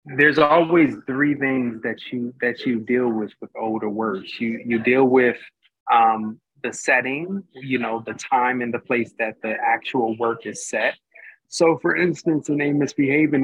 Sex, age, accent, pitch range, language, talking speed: male, 30-49, American, 115-145 Hz, English, 175 wpm